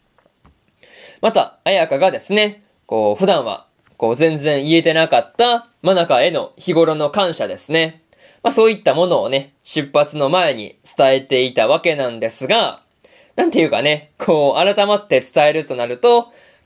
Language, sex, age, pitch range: Japanese, male, 20-39, 140-195 Hz